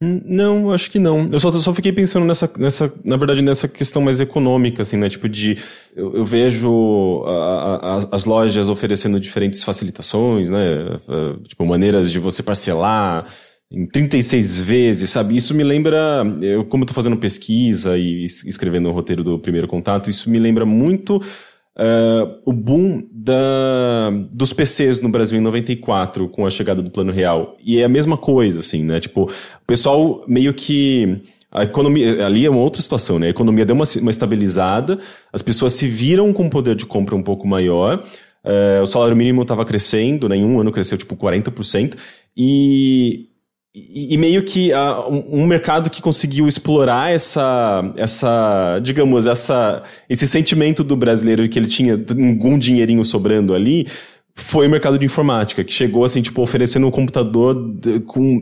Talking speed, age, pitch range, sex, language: 170 wpm, 20-39, 100-135 Hz, male, English